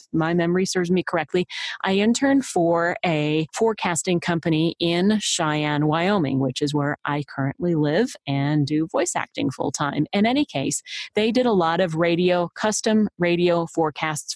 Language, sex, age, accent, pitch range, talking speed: English, female, 30-49, American, 155-185 Hz, 160 wpm